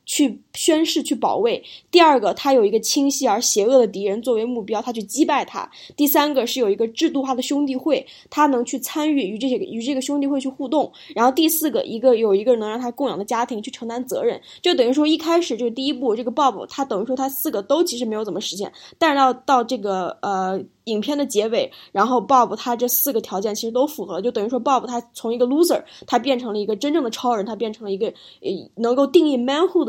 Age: 10-29